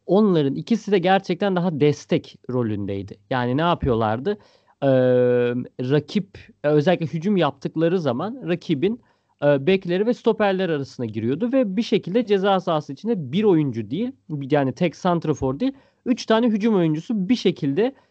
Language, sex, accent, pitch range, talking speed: Turkish, male, native, 140-210 Hz, 140 wpm